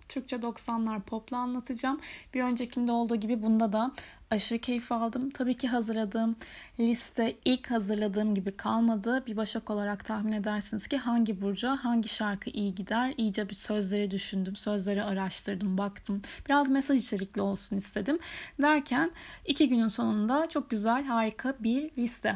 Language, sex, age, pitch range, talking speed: Turkish, female, 10-29, 215-275 Hz, 145 wpm